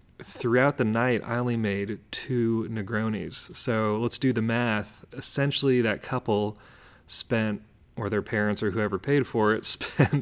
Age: 30-49